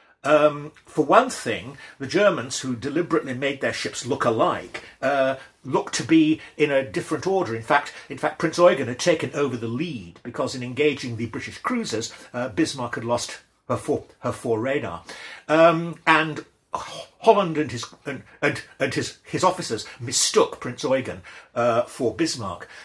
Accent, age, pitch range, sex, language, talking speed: British, 50-69, 120-160 Hz, male, English, 170 wpm